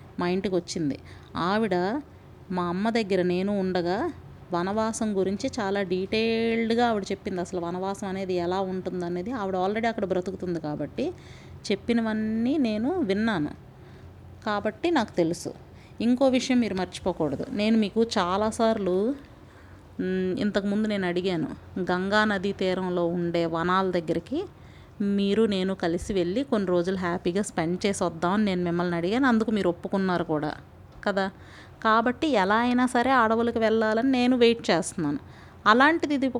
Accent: native